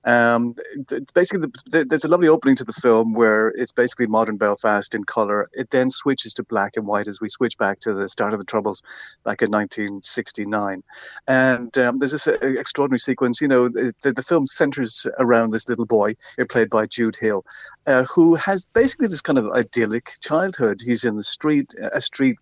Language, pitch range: English, 110-130 Hz